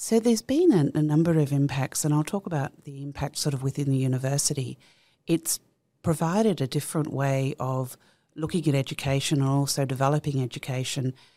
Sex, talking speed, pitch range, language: female, 170 wpm, 140-155 Hz, Arabic